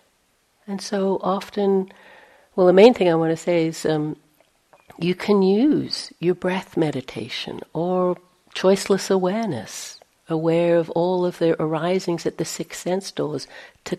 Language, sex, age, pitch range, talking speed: English, female, 60-79, 165-195 Hz, 145 wpm